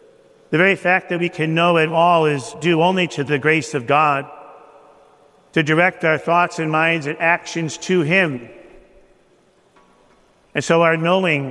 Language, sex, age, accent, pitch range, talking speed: English, male, 50-69, American, 145-180 Hz, 160 wpm